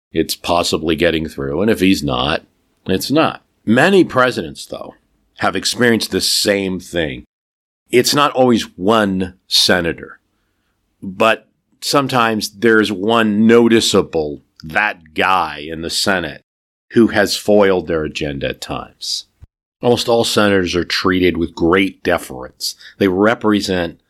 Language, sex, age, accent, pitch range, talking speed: English, male, 50-69, American, 90-110 Hz, 125 wpm